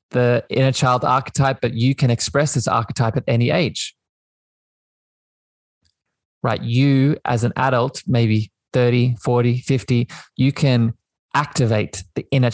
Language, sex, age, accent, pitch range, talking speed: English, male, 20-39, Australian, 110-130 Hz, 130 wpm